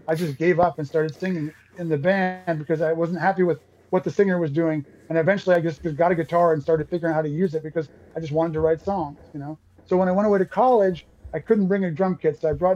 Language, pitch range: English, 140-170 Hz